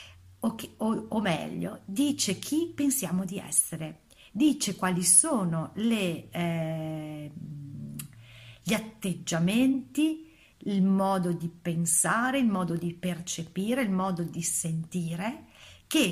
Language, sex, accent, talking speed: Italian, female, native, 110 wpm